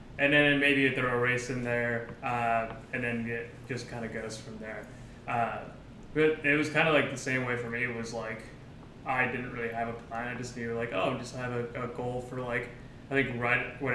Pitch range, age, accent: 115-130 Hz, 20-39, American